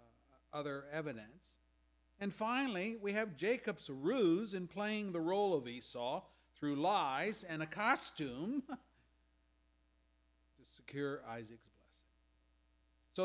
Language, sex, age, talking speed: English, male, 50-69, 110 wpm